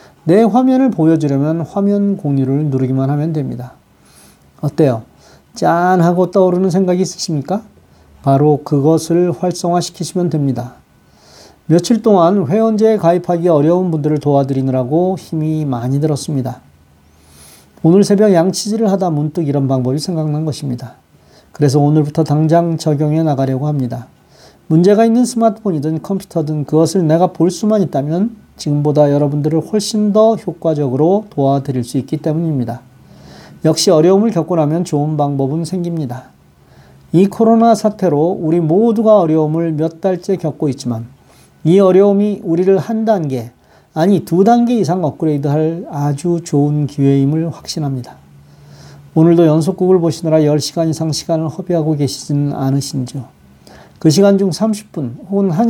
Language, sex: Korean, male